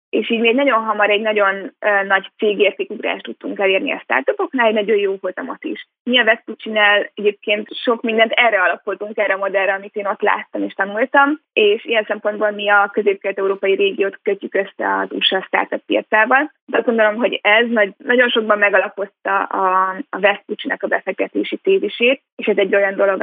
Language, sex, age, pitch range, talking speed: Hungarian, female, 20-39, 200-245 Hz, 175 wpm